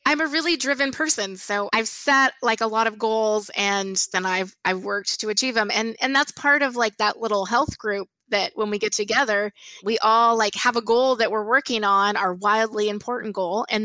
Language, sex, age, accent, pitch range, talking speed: English, female, 20-39, American, 205-255 Hz, 220 wpm